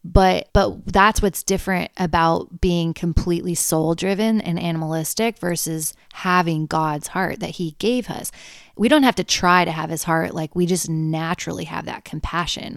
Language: English